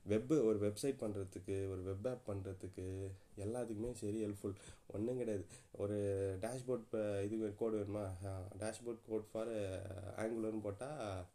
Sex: male